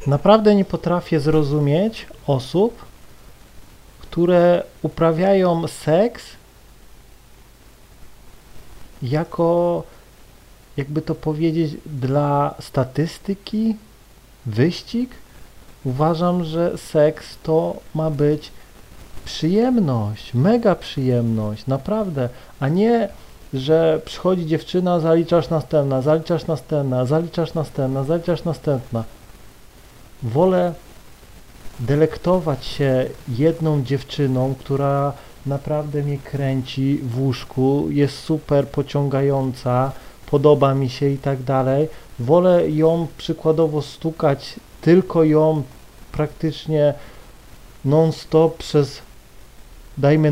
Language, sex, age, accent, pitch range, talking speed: Polish, male, 40-59, native, 140-165 Hz, 80 wpm